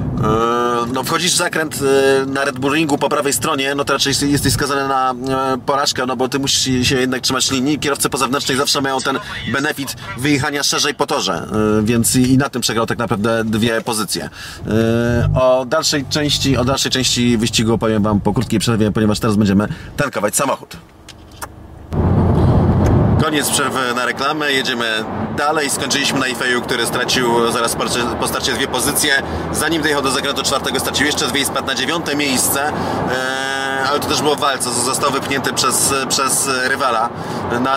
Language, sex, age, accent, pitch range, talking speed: English, male, 30-49, Polish, 115-140 Hz, 155 wpm